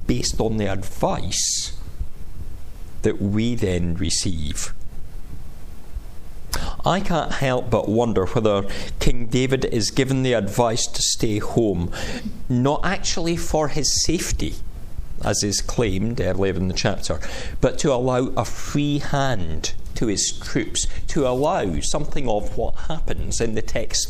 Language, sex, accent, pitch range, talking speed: English, male, British, 85-120 Hz, 130 wpm